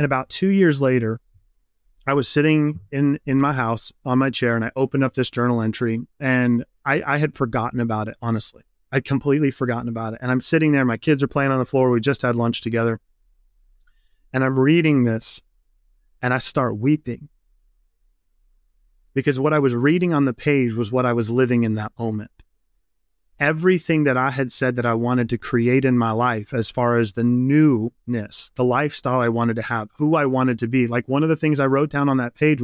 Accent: American